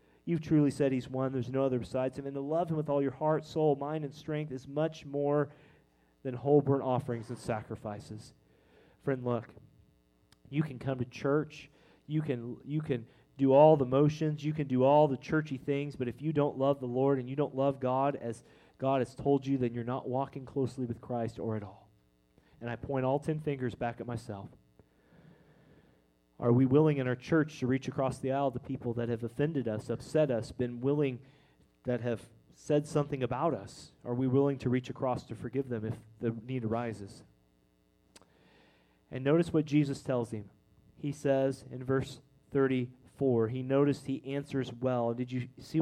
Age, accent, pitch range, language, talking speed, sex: 30-49, American, 120-145 Hz, English, 195 wpm, male